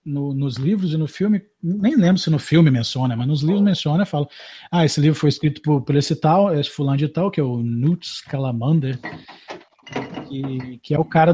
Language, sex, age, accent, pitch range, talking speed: Portuguese, male, 40-59, Brazilian, 140-195 Hz, 210 wpm